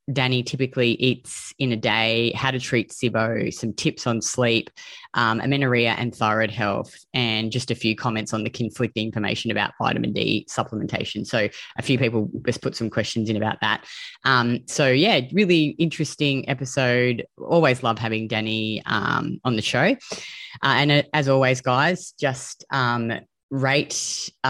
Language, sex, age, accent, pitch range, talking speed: English, female, 20-39, Australian, 115-135 Hz, 160 wpm